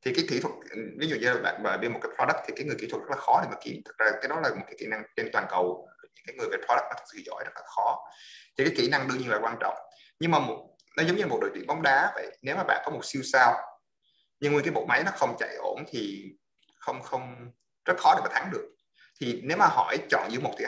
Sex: male